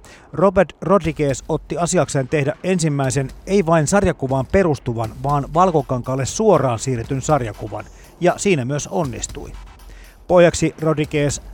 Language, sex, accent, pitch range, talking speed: Finnish, male, native, 120-160 Hz, 110 wpm